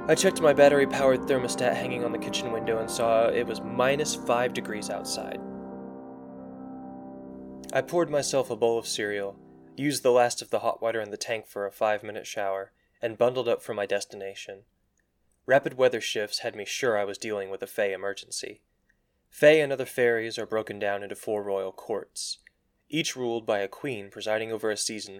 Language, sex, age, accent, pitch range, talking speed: English, male, 20-39, American, 100-125 Hz, 185 wpm